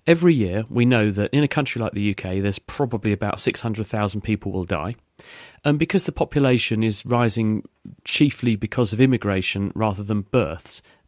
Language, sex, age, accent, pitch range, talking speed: English, male, 40-59, British, 100-130 Hz, 170 wpm